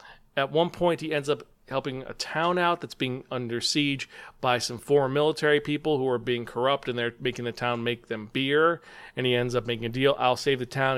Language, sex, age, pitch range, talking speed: English, male, 40-59, 125-160 Hz, 230 wpm